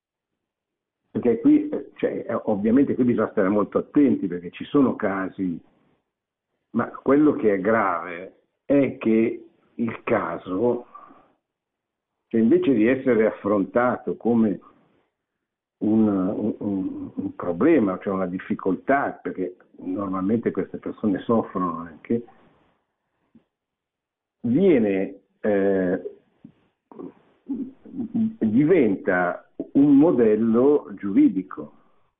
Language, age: Italian, 60-79